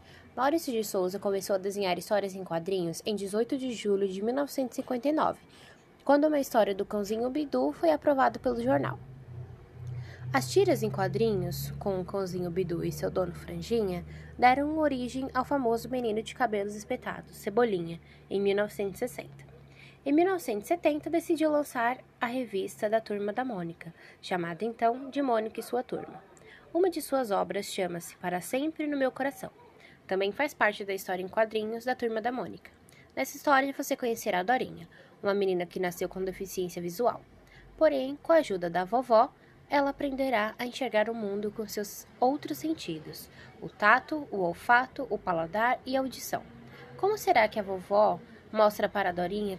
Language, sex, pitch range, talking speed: Portuguese, female, 190-265 Hz, 160 wpm